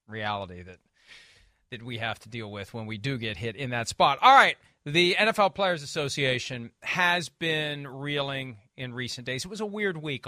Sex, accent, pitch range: male, American, 130-165 Hz